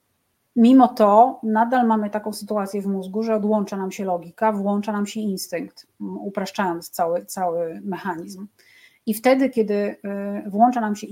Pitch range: 205-240 Hz